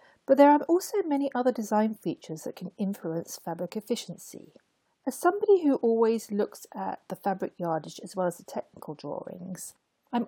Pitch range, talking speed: 185-250 Hz, 170 wpm